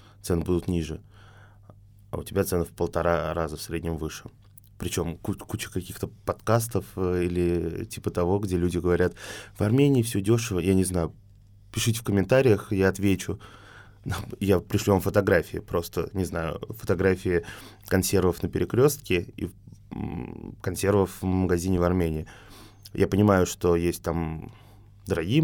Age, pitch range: 20-39, 90-105 Hz